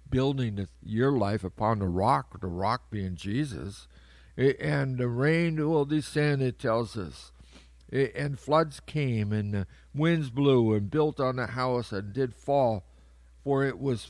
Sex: male